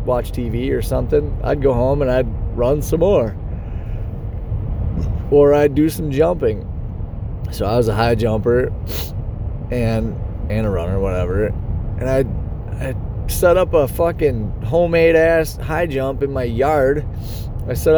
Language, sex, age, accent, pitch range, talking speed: English, male, 30-49, American, 100-135 Hz, 145 wpm